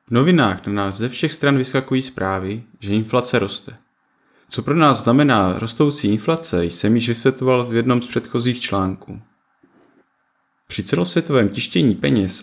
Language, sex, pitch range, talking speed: Czech, male, 100-130 Hz, 145 wpm